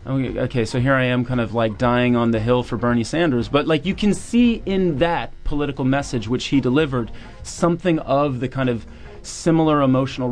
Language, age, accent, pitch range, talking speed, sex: English, 30-49, American, 120-140 Hz, 205 wpm, male